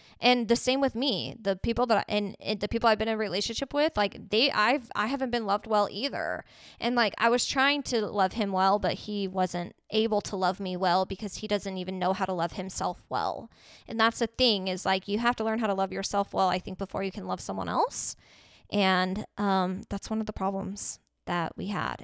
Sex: female